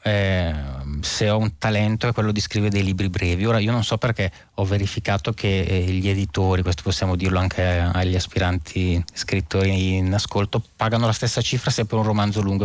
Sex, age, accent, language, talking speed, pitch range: male, 30-49, native, Italian, 195 wpm, 95-110 Hz